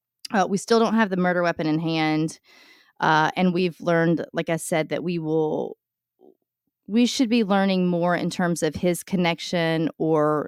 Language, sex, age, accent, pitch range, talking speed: English, female, 30-49, American, 160-195 Hz, 180 wpm